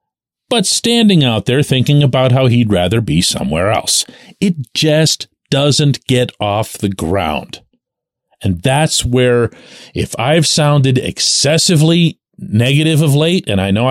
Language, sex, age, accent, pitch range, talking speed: English, male, 40-59, American, 115-160 Hz, 140 wpm